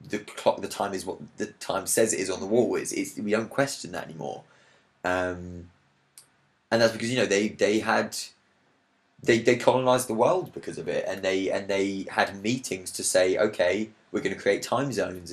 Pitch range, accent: 90-105 Hz, British